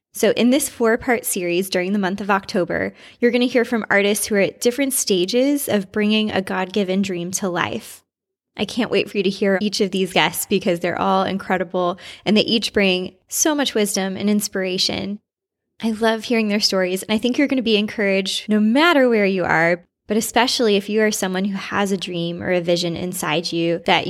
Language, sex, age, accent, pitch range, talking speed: English, female, 20-39, American, 185-225 Hz, 215 wpm